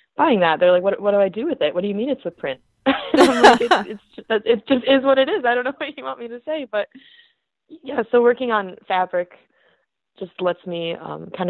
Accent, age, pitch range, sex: American, 20-39, 165-215 Hz, female